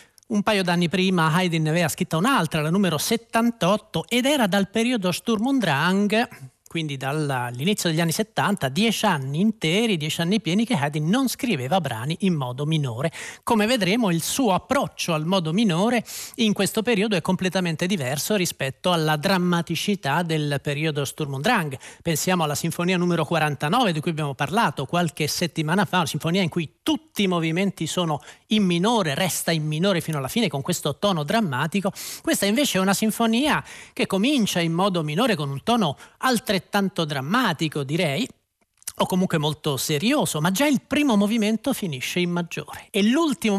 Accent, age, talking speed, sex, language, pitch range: native, 40-59, 170 wpm, male, Italian, 155-215 Hz